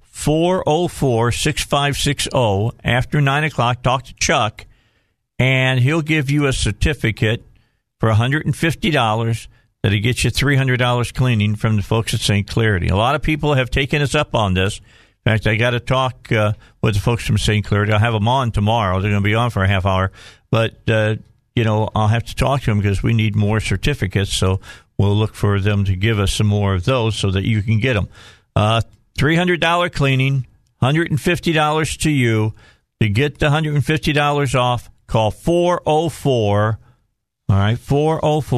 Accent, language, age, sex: American, English, 50-69, male